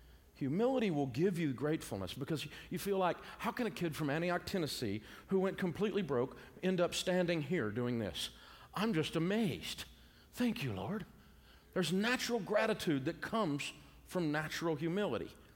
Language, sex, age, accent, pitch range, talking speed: English, male, 50-69, American, 115-170 Hz, 155 wpm